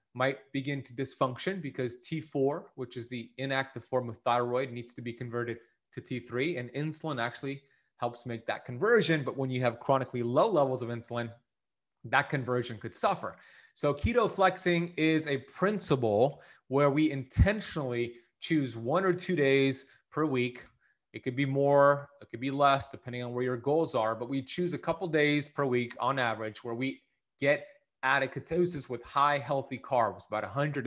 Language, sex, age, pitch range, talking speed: English, male, 30-49, 125-155 Hz, 175 wpm